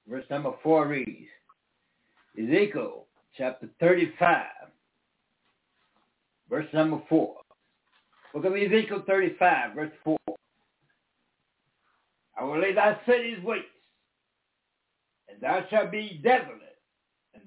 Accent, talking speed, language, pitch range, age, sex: American, 95 wpm, English, 190-275 Hz, 60-79, male